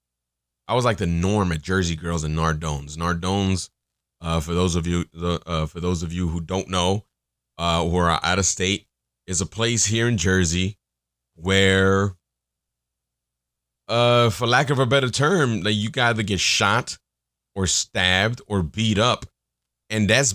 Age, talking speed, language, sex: 30-49, 170 wpm, English, male